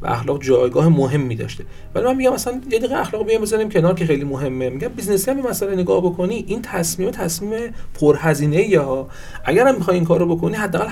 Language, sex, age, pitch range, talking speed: Persian, male, 40-59, 150-195 Hz, 190 wpm